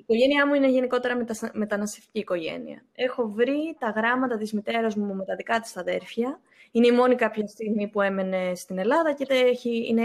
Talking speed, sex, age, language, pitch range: 185 wpm, female, 20-39, Greek, 195-265 Hz